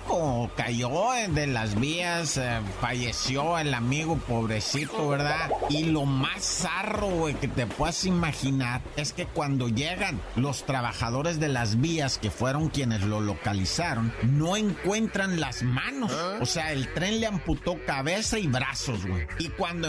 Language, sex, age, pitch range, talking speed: Spanish, male, 50-69, 125-160 Hz, 145 wpm